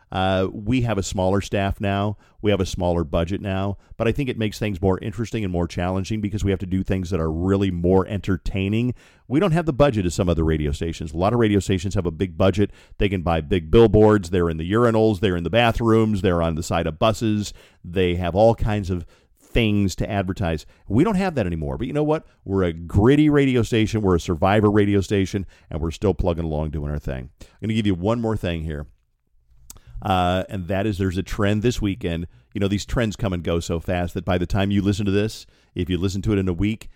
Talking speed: 245 wpm